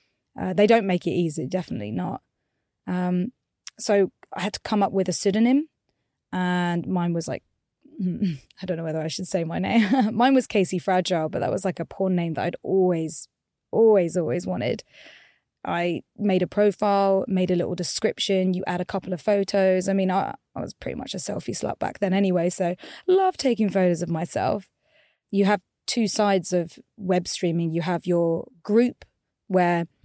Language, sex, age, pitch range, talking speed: English, female, 20-39, 180-210 Hz, 185 wpm